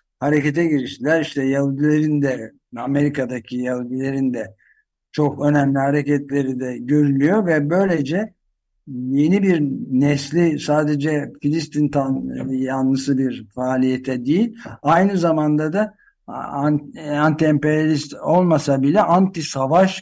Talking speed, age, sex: 95 wpm, 60-79, male